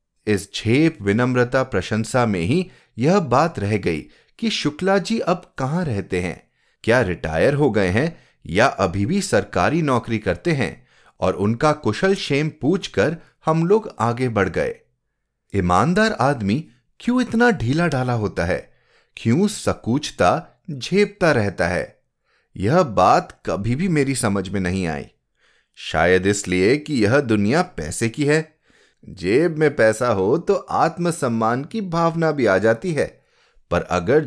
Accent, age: native, 30-49